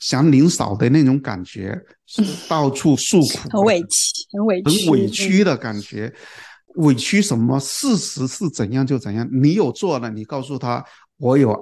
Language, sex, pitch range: Chinese, male, 125-170 Hz